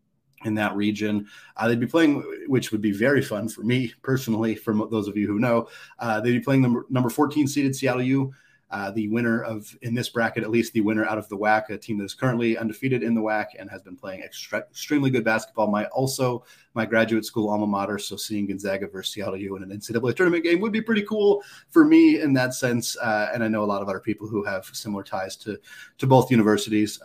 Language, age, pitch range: English, 30-49, 105-125 Hz